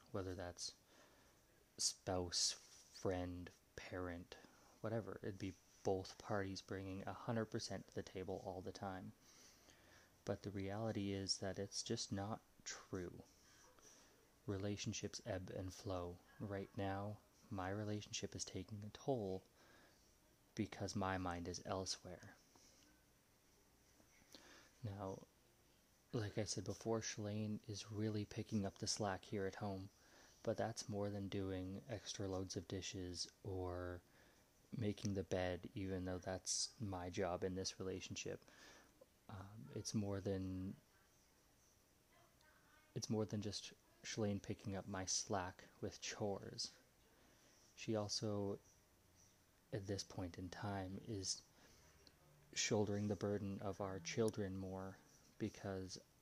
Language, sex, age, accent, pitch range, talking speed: English, male, 20-39, American, 95-105 Hz, 120 wpm